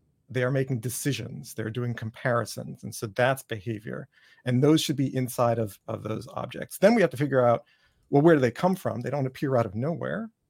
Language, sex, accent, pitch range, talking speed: English, male, American, 115-145 Hz, 210 wpm